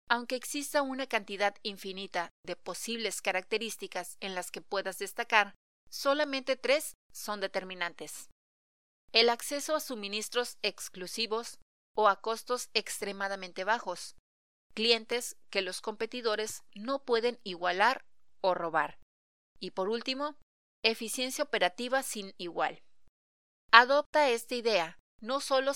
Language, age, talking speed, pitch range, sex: Spanish, 30-49, 110 wpm, 180-235 Hz, female